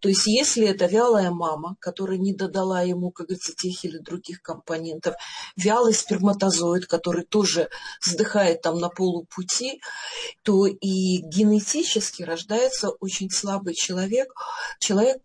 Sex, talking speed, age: female, 125 wpm, 40-59